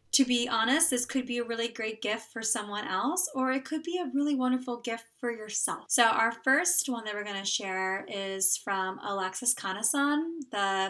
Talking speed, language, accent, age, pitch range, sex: 205 wpm, English, American, 20-39, 195-235 Hz, female